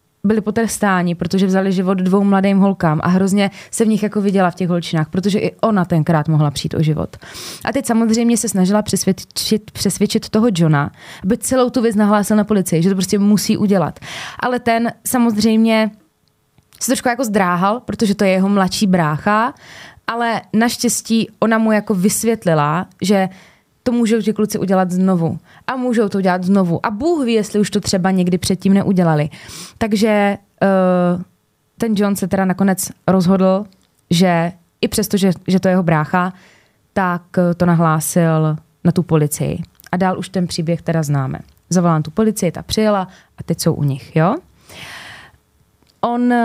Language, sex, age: Czech, female, 20-39